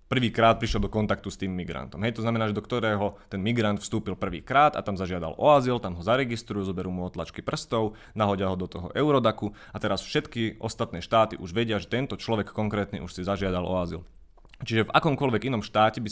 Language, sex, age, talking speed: Slovak, male, 30-49, 210 wpm